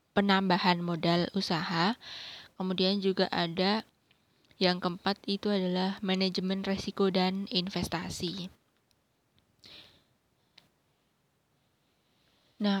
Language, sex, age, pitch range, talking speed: Indonesian, female, 20-39, 190-215 Hz, 70 wpm